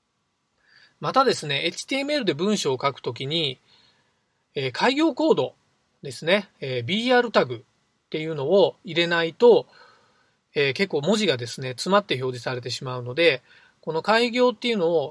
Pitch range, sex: 135-200 Hz, male